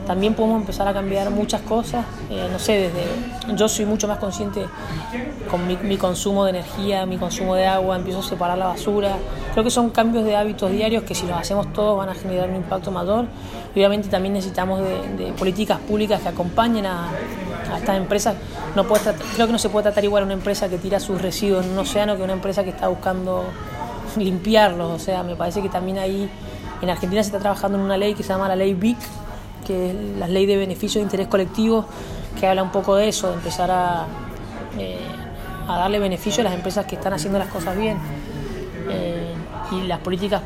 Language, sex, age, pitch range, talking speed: Portuguese, female, 20-39, 185-210 Hz, 215 wpm